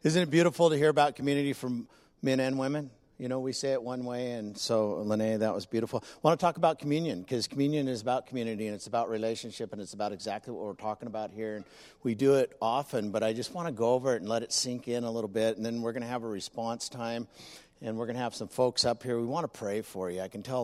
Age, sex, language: 50-69, male, English